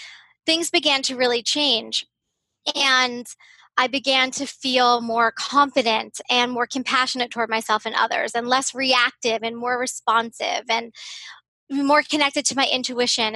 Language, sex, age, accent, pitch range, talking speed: English, female, 20-39, American, 240-295 Hz, 140 wpm